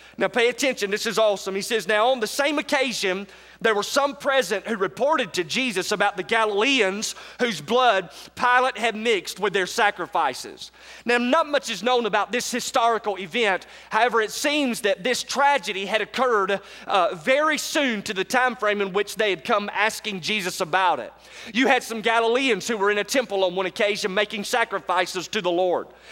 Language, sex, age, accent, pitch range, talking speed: English, male, 30-49, American, 205-250 Hz, 190 wpm